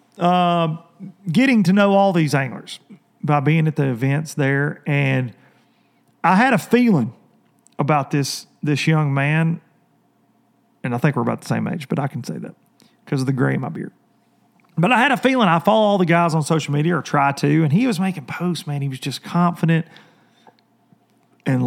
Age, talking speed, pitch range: 40-59, 195 wpm, 145-195 Hz